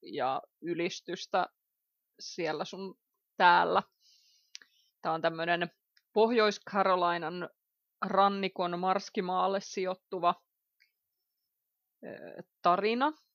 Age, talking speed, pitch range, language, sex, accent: 30-49, 60 wpm, 170-200 Hz, English, female, Finnish